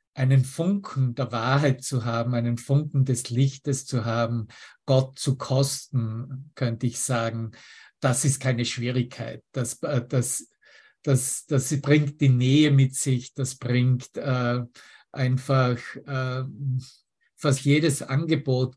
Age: 50-69